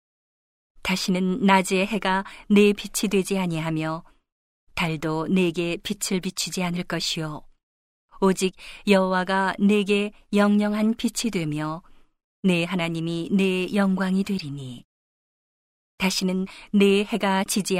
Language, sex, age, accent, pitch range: Korean, female, 40-59, native, 170-200 Hz